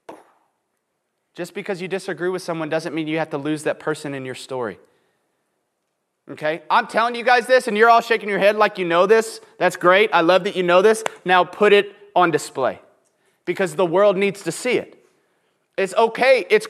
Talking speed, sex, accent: 200 wpm, male, American